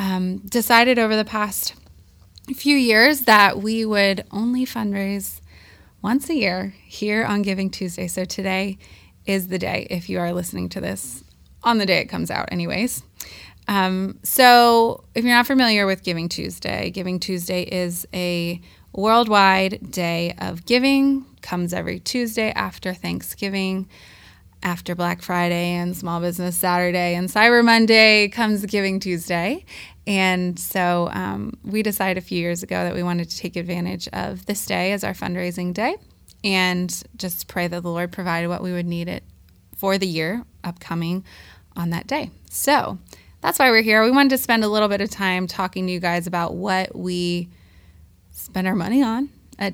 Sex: female